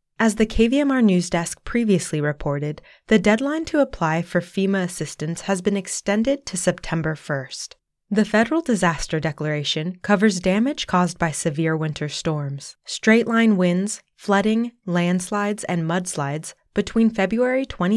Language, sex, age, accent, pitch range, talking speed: English, female, 20-39, American, 165-215 Hz, 130 wpm